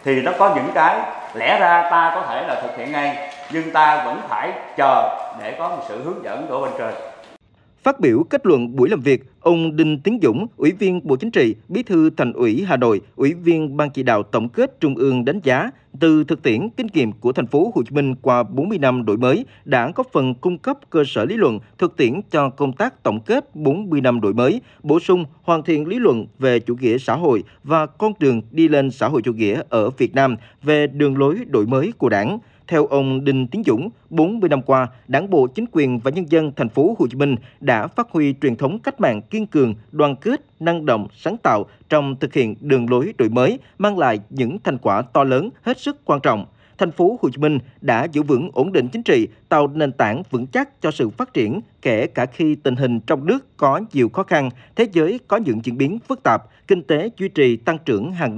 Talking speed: 235 wpm